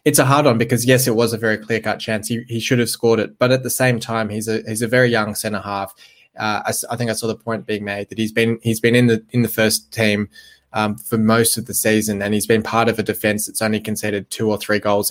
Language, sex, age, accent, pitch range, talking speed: English, male, 20-39, Australian, 110-125 Hz, 290 wpm